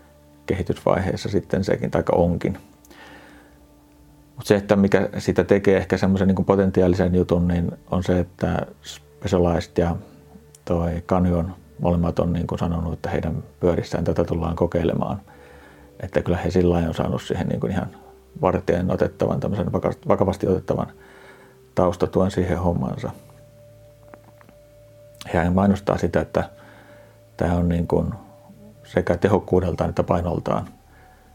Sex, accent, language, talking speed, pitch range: male, native, Finnish, 125 wpm, 75-100 Hz